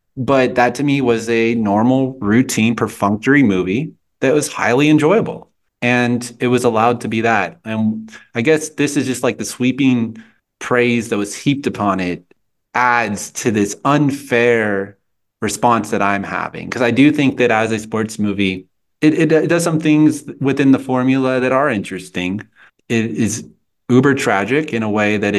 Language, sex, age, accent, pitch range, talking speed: English, male, 30-49, American, 105-130 Hz, 175 wpm